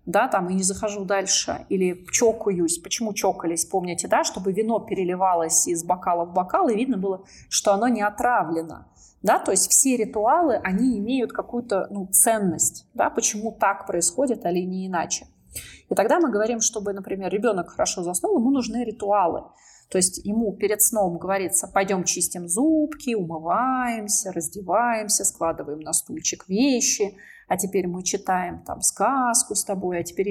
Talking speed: 155 wpm